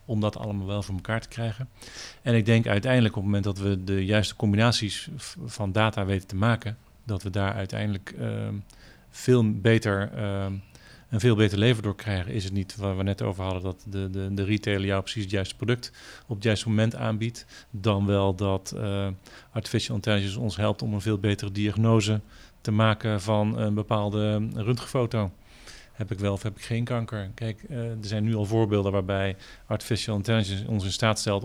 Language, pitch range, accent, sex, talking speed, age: Dutch, 100-115 Hz, Dutch, male, 195 wpm, 40-59